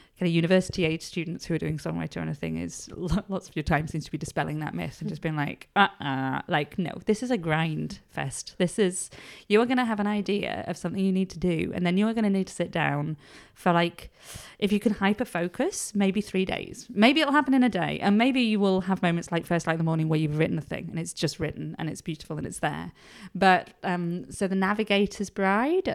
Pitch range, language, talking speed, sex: 165-200 Hz, English, 245 wpm, female